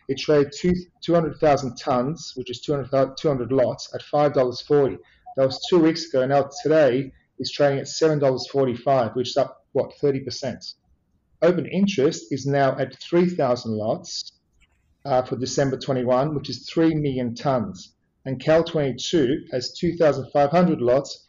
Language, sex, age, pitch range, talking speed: English, male, 40-59, 130-155 Hz, 140 wpm